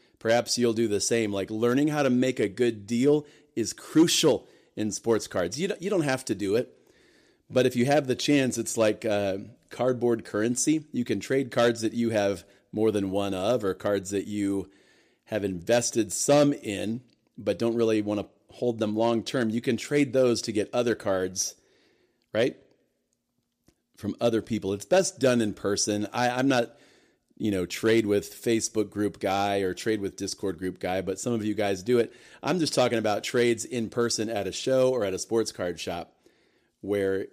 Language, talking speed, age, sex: English, 195 wpm, 40-59, male